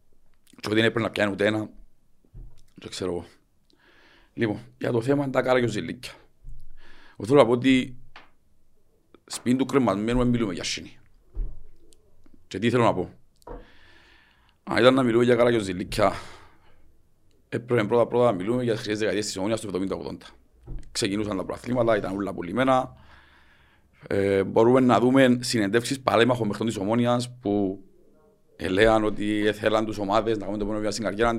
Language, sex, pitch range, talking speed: Greek, male, 95-120 Hz, 125 wpm